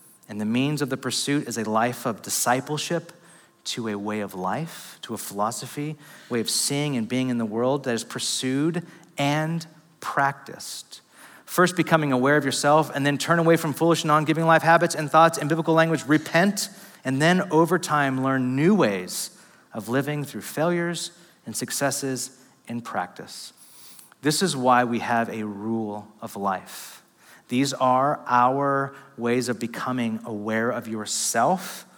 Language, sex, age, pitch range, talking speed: English, male, 30-49, 125-160 Hz, 160 wpm